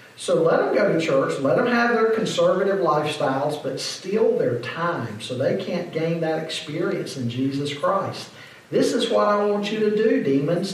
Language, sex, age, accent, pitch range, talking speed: English, male, 50-69, American, 150-225 Hz, 190 wpm